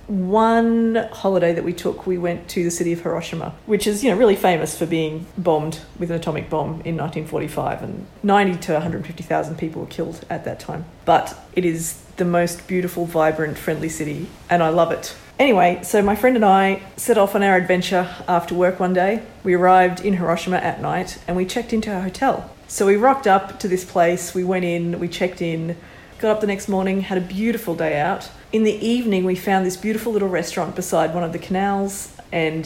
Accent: Australian